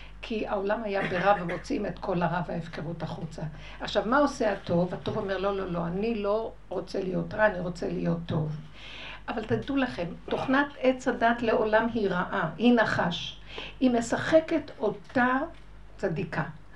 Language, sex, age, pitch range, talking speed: Hebrew, female, 60-79, 180-240 Hz, 155 wpm